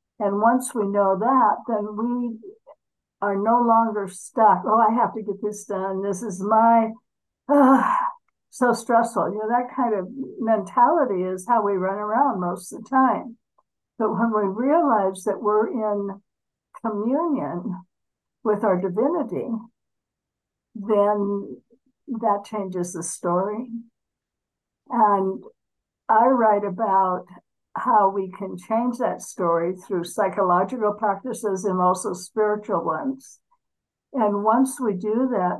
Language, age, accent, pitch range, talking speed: English, 60-79, American, 190-240 Hz, 130 wpm